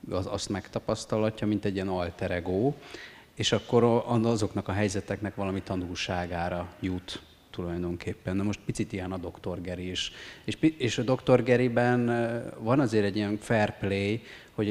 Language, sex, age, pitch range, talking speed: Hungarian, male, 30-49, 90-110 Hz, 140 wpm